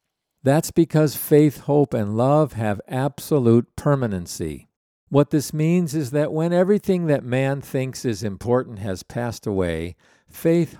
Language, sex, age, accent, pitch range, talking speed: English, male, 50-69, American, 105-145 Hz, 140 wpm